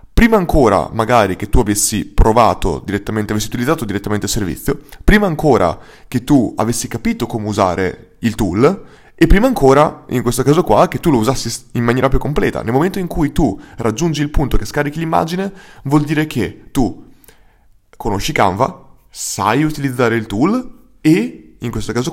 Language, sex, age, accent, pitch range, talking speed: Italian, male, 20-39, native, 110-145 Hz, 170 wpm